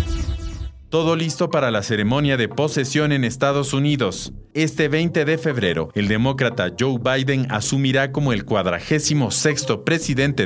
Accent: Mexican